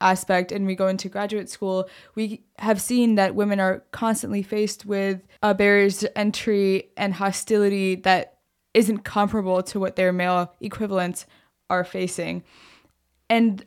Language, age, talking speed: English, 20-39, 140 wpm